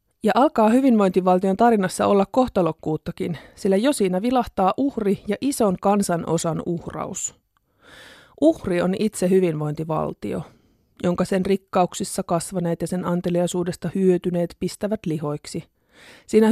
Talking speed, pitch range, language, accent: 115 wpm, 175-215 Hz, Finnish, native